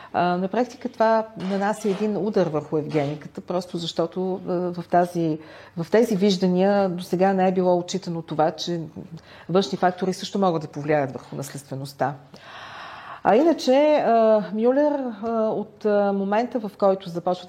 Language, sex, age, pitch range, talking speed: Bulgarian, female, 40-59, 160-200 Hz, 135 wpm